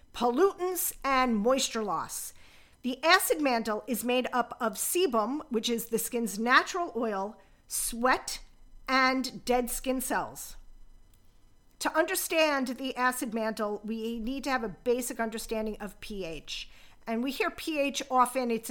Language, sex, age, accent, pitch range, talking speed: English, female, 40-59, American, 225-270 Hz, 140 wpm